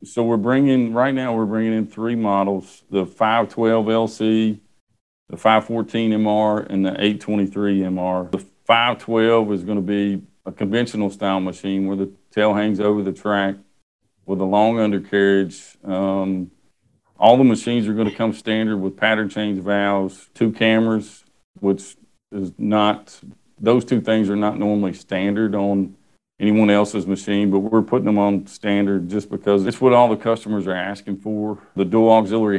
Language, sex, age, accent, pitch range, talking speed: English, male, 40-59, American, 95-110 Hz, 165 wpm